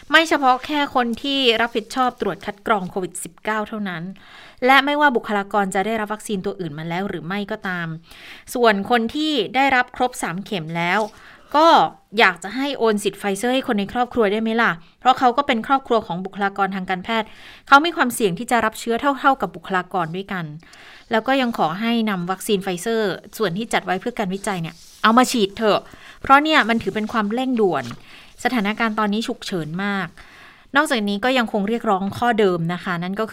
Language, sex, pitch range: Thai, female, 185-230 Hz